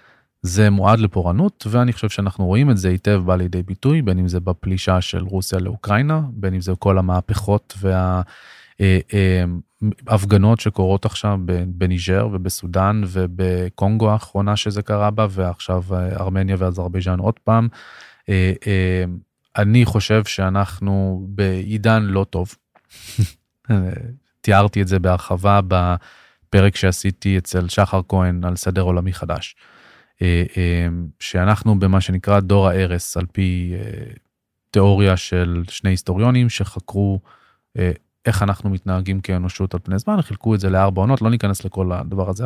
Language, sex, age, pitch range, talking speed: Hebrew, male, 20-39, 95-105 Hz, 135 wpm